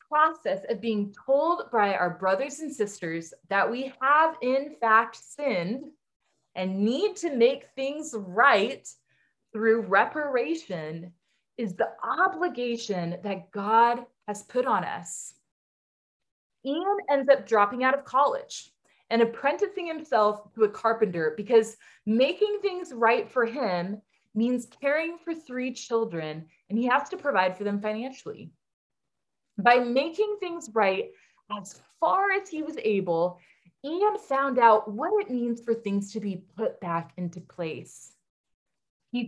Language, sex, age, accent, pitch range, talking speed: English, female, 20-39, American, 200-290 Hz, 135 wpm